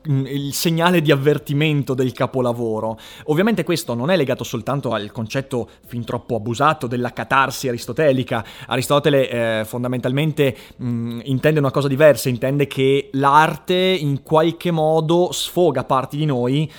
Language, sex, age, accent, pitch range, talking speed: Italian, male, 30-49, native, 125-150 Hz, 130 wpm